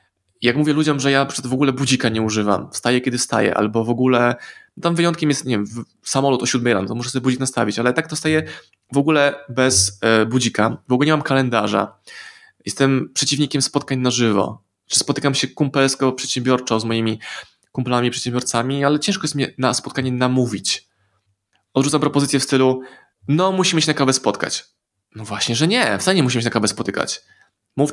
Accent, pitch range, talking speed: native, 115-145 Hz, 185 wpm